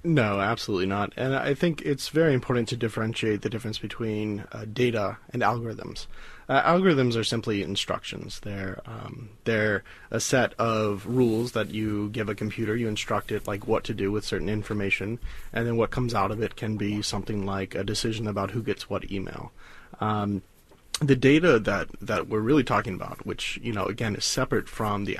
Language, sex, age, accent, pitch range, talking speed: English, male, 30-49, American, 100-115 Hz, 195 wpm